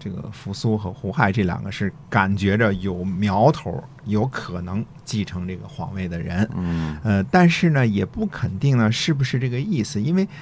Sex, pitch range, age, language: male, 100-145 Hz, 50-69, Chinese